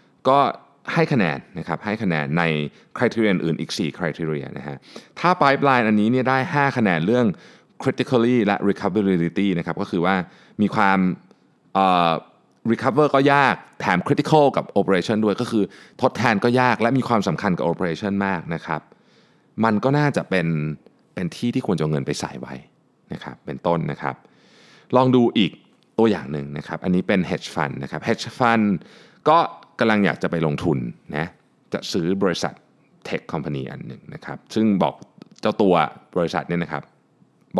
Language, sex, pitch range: Thai, male, 80-120 Hz